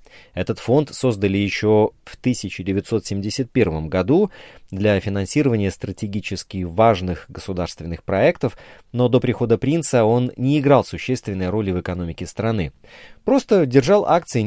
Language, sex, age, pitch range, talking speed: Russian, male, 30-49, 95-135 Hz, 115 wpm